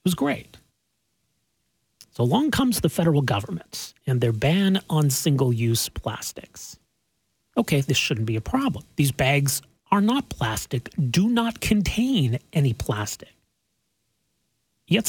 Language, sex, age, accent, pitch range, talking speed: English, male, 40-59, American, 125-195 Hz, 125 wpm